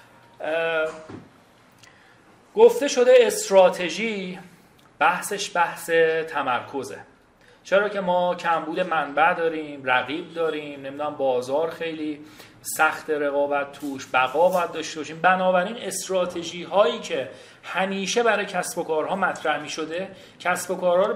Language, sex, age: Persian, male, 40-59